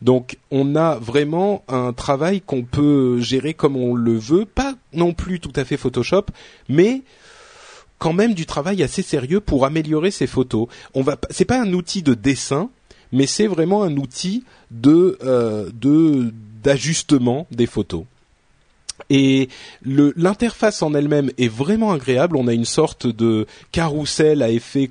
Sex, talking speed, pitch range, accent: male, 155 wpm, 120-160 Hz, French